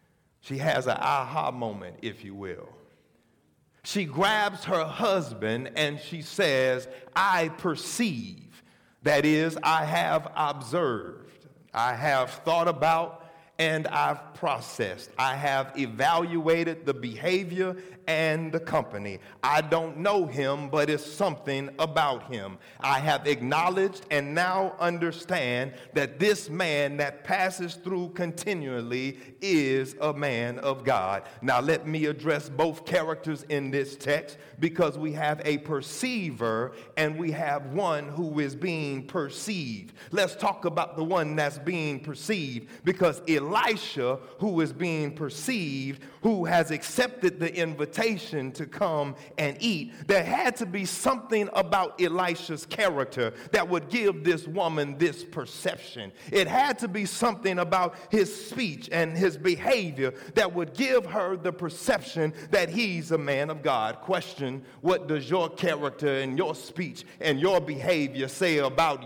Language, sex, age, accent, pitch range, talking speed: English, male, 40-59, American, 145-180 Hz, 140 wpm